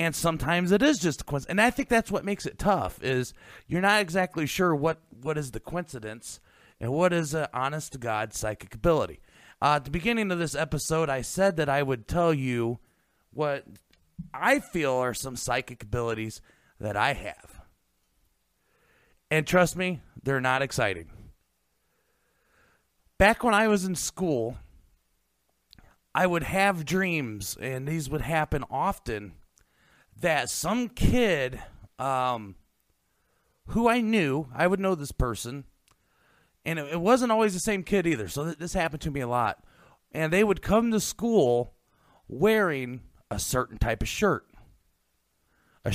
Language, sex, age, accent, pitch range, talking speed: English, male, 30-49, American, 120-175 Hz, 155 wpm